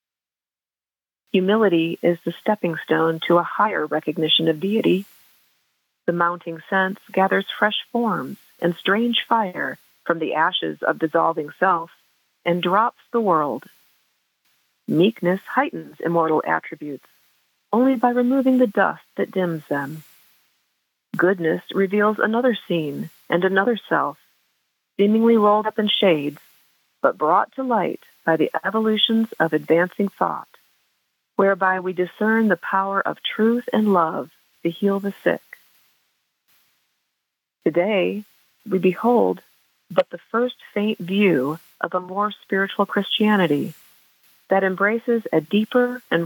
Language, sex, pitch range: English, female, 170-215 Hz